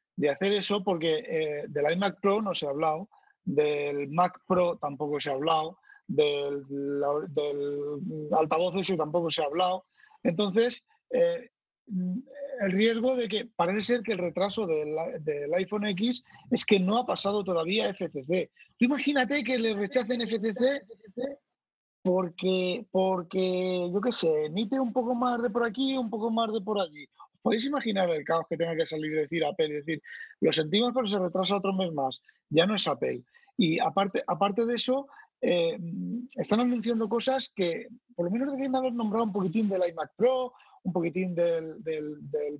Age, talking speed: 30-49, 170 wpm